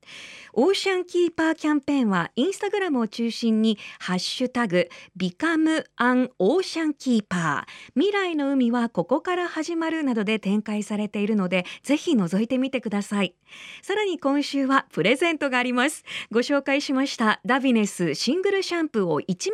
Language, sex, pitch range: Japanese, female, 200-295 Hz